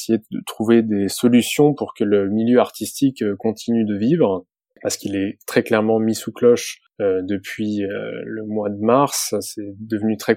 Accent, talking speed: French, 160 wpm